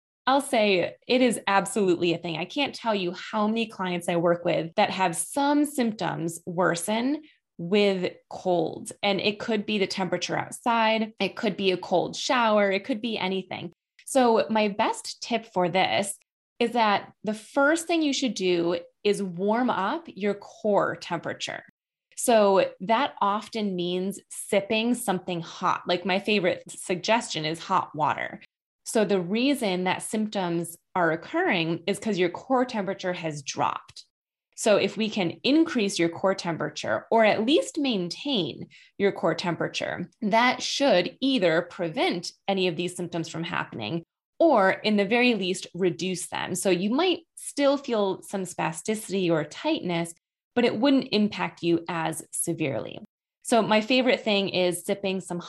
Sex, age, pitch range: female, 20-39, 175-230 Hz